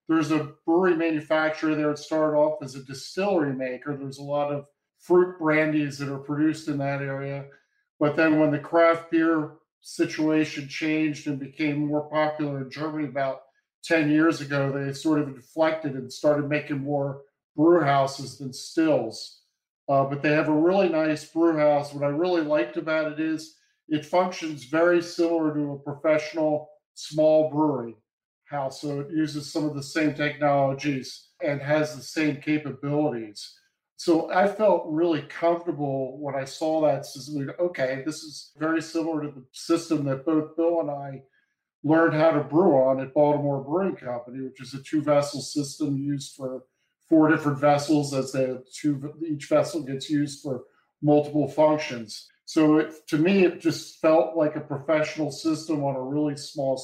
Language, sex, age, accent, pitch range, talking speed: English, male, 50-69, American, 140-160 Hz, 170 wpm